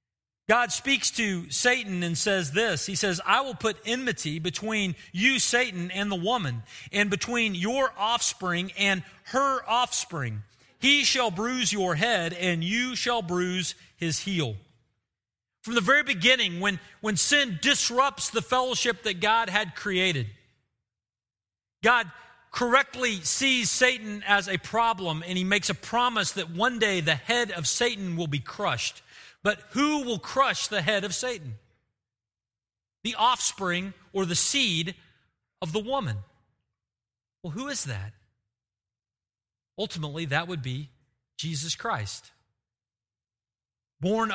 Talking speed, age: 135 wpm, 40-59